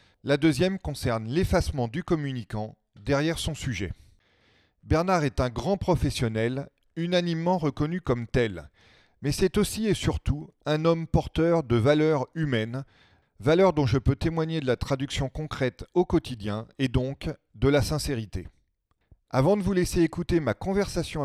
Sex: male